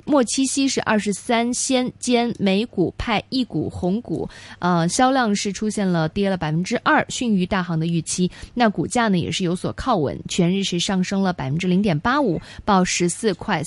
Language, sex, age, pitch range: Chinese, female, 20-39, 175-245 Hz